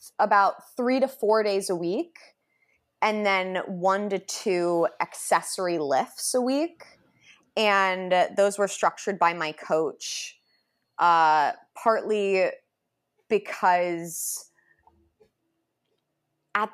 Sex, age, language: female, 20-39, English